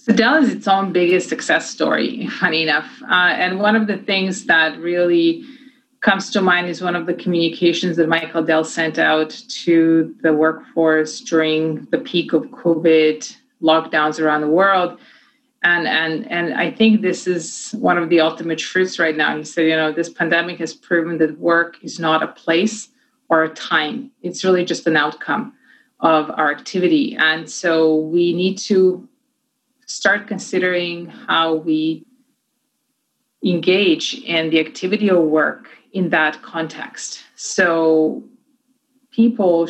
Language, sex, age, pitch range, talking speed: English, female, 30-49, 160-235 Hz, 155 wpm